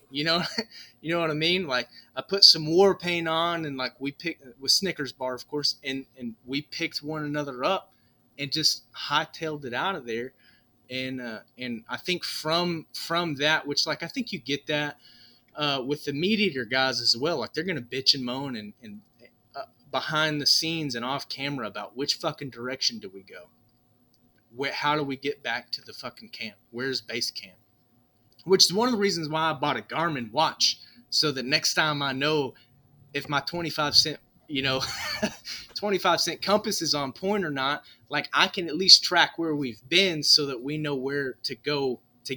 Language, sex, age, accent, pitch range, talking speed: English, male, 30-49, American, 125-155 Hz, 205 wpm